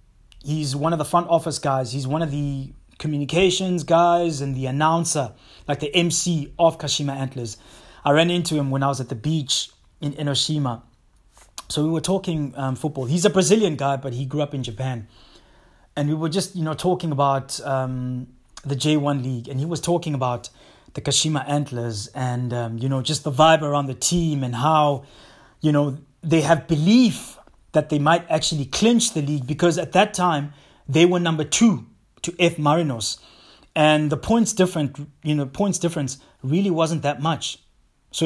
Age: 20-39